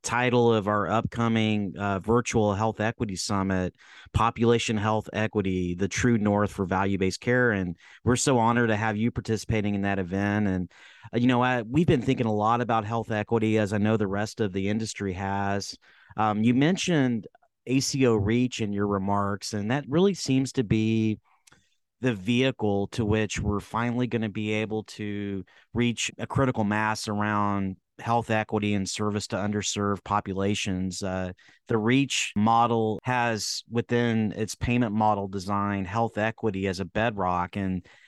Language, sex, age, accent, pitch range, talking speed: English, male, 30-49, American, 100-120 Hz, 165 wpm